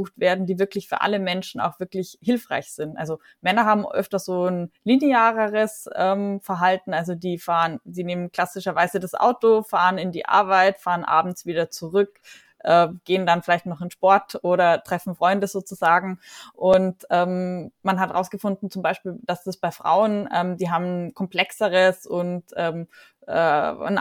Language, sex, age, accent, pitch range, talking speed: German, female, 20-39, German, 175-205 Hz, 160 wpm